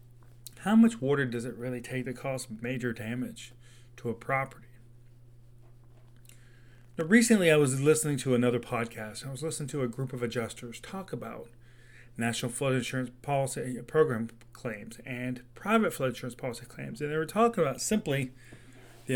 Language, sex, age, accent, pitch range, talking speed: English, male, 30-49, American, 120-155 Hz, 160 wpm